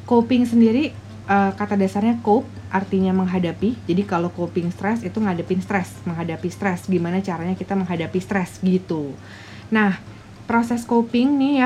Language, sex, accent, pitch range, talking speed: Indonesian, female, native, 185-235 Hz, 145 wpm